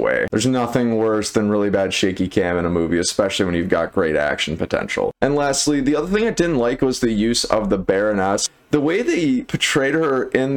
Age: 20-39